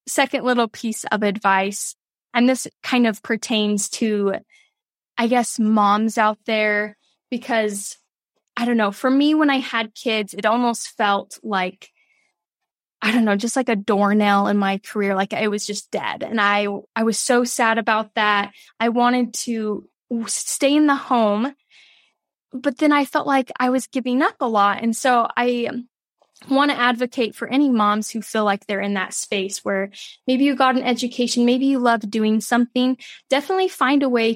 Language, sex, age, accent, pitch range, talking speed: English, female, 10-29, American, 210-250 Hz, 180 wpm